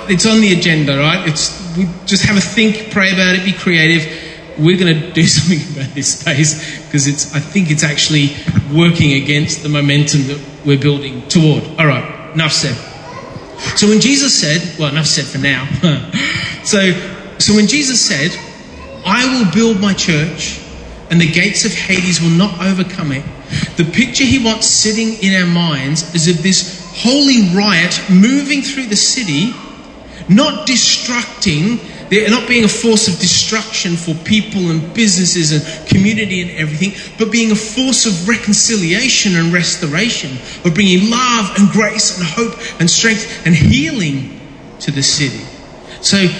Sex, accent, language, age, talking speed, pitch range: male, Australian, English, 30-49, 160 wpm, 155-210 Hz